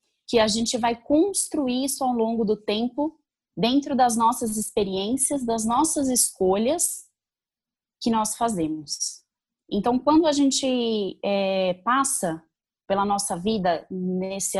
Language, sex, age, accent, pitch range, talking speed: Portuguese, female, 20-39, Brazilian, 200-260 Hz, 125 wpm